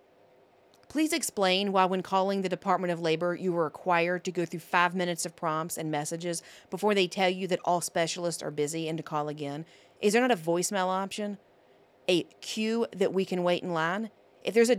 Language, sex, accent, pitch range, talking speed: English, female, American, 160-195 Hz, 205 wpm